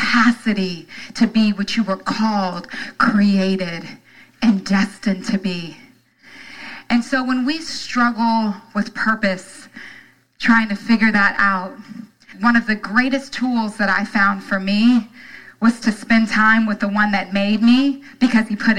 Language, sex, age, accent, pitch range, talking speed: English, female, 30-49, American, 195-245 Hz, 150 wpm